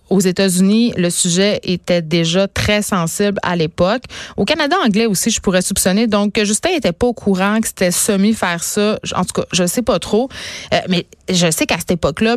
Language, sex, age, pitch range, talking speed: French, female, 30-49, 175-210 Hz, 205 wpm